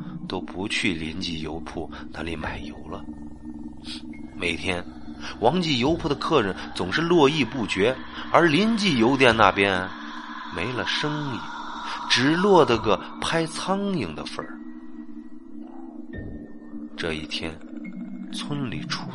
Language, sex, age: Chinese, male, 30-49